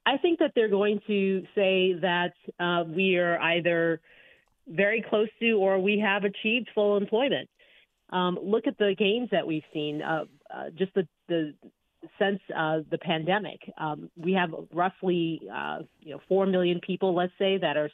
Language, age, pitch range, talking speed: English, 40-59, 160-195 Hz, 175 wpm